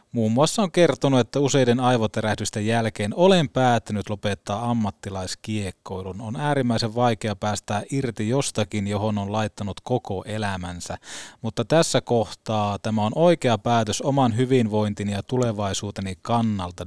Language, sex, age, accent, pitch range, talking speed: Finnish, male, 20-39, native, 105-130 Hz, 125 wpm